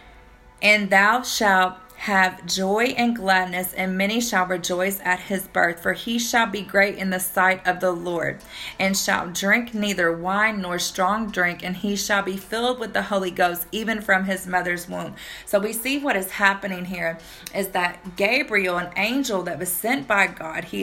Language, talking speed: English, 185 wpm